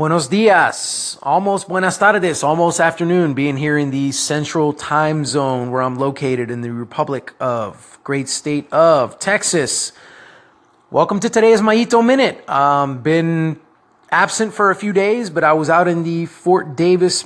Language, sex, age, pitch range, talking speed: English, male, 30-49, 140-185 Hz, 155 wpm